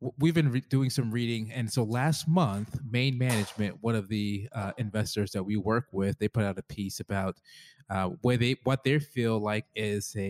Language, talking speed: English, 210 wpm